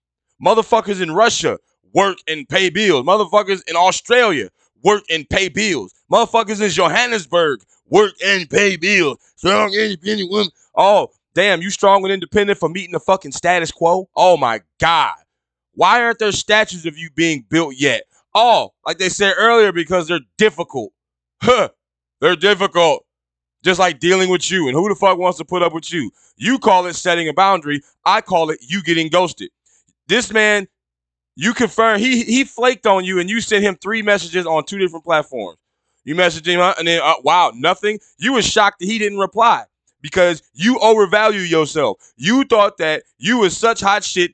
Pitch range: 165-215 Hz